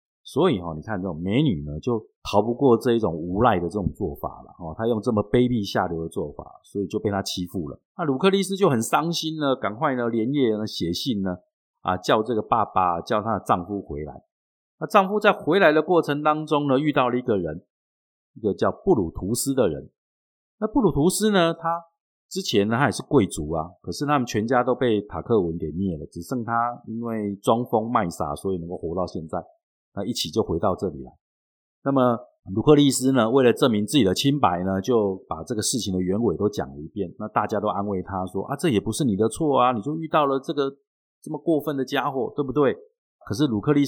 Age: 50-69